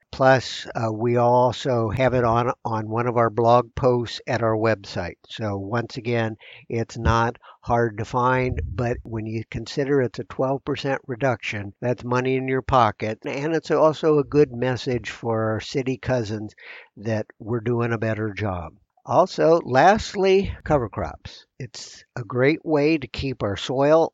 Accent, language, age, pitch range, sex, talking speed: American, English, 60-79, 115-145 Hz, male, 160 wpm